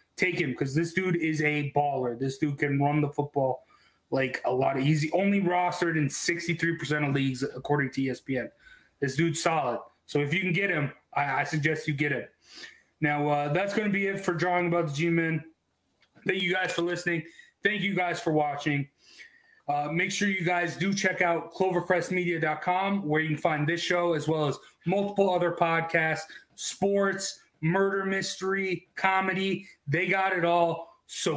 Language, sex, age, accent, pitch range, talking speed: English, male, 30-49, American, 160-195 Hz, 185 wpm